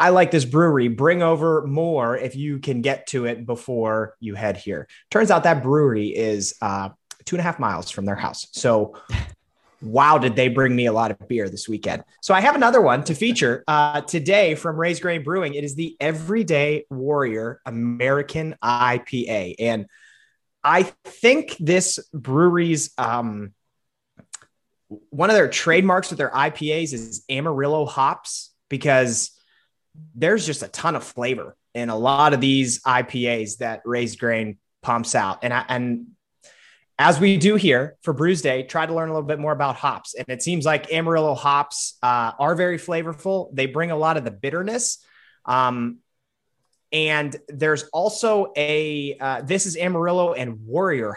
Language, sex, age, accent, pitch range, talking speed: English, male, 30-49, American, 120-165 Hz, 165 wpm